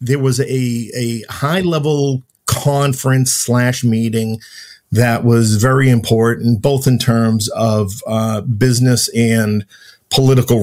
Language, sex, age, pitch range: English, male, 50-69, 105-130 Hz